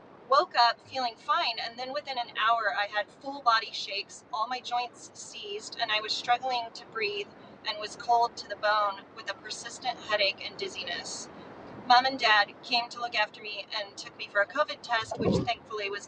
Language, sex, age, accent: English, female, 30-49, American